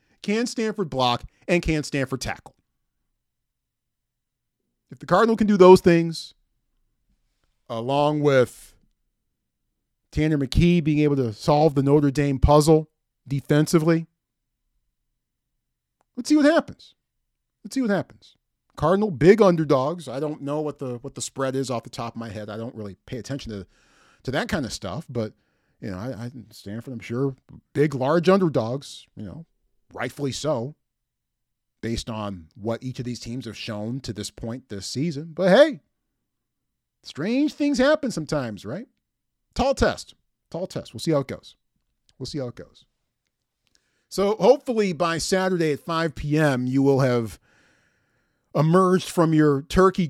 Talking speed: 155 wpm